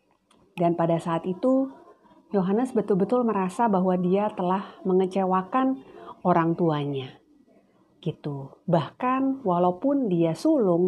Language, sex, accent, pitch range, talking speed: Indonesian, female, native, 160-220 Hz, 100 wpm